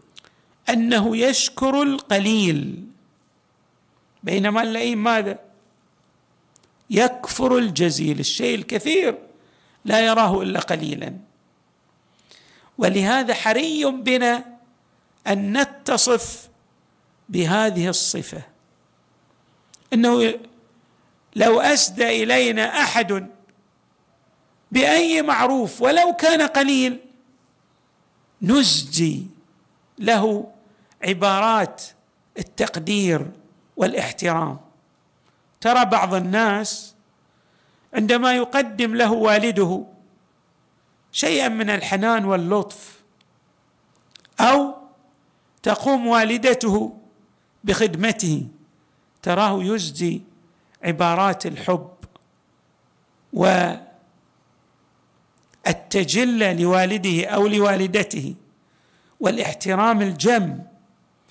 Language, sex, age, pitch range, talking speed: Arabic, male, 50-69, 190-240 Hz, 60 wpm